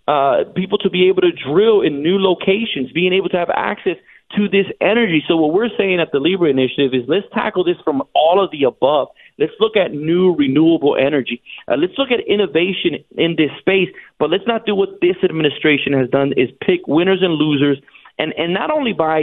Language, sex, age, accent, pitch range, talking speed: English, male, 40-59, American, 150-200 Hz, 210 wpm